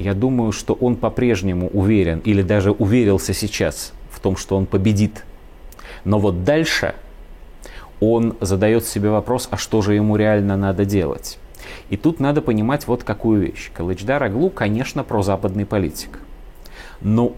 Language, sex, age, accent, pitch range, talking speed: Russian, male, 30-49, native, 95-125 Hz, 145 wpm